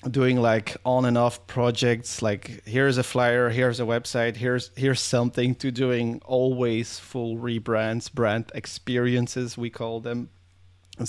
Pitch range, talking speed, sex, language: 110-125 Hz, 145 wpm, male, English